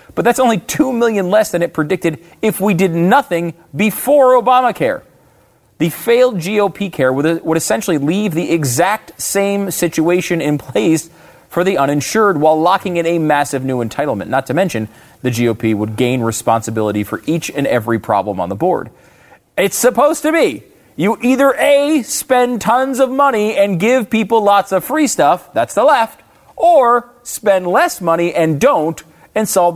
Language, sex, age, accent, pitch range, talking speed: English, male, 30-49, American, 130-205 Hz, 170 wpm